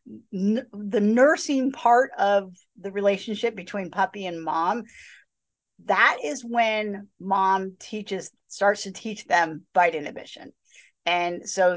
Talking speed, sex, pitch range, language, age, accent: 115 wpm, female, 180-220 Hz, English, 40-59, American